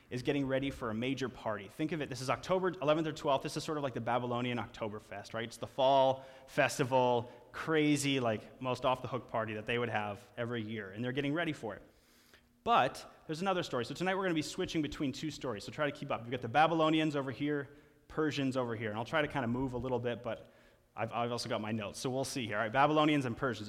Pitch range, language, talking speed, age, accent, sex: 115-145 Hz, English, 255 wpm, 30-49, American, male